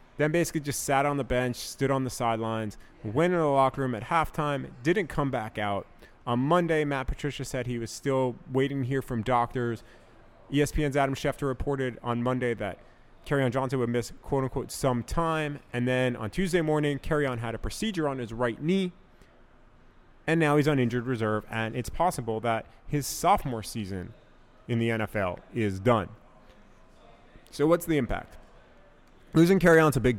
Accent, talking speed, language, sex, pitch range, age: American, 175 wpm, English, male, 115-150 Hz, 30-49